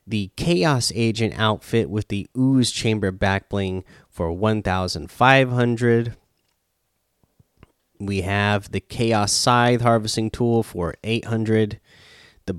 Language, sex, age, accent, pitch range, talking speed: English, male, 30-49, American, 100-125 Hz, 100 wpm